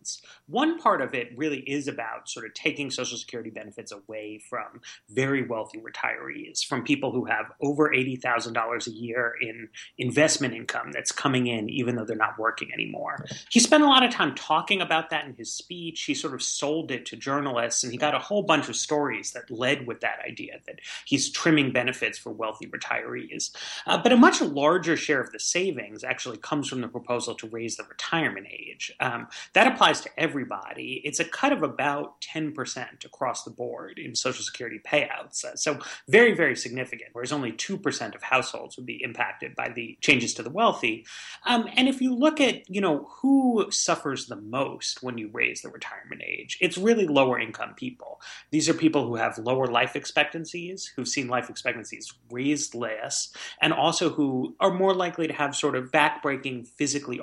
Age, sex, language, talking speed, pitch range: 30-49, male, English, 190 wpm, 120-165 Hz